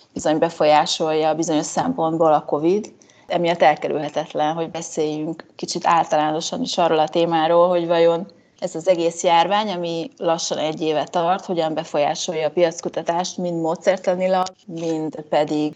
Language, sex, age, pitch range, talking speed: Hungarian, female, 30-49, 160-185 Hz, 135 wpm